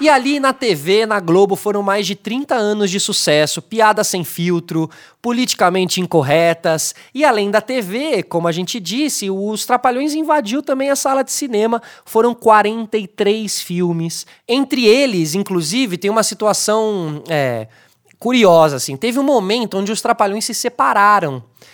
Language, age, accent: Portuguese, 20-39, Brazilian